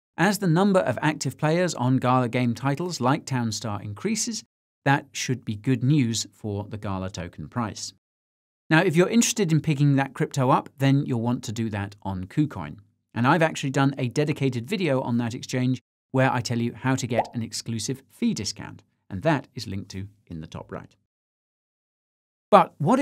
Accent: British